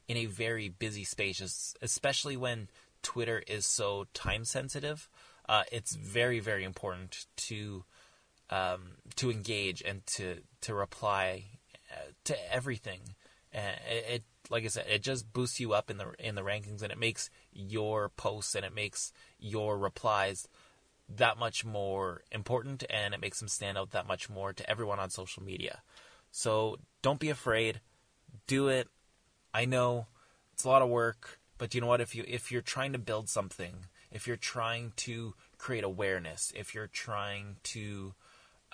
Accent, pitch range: American, 100-125 Hz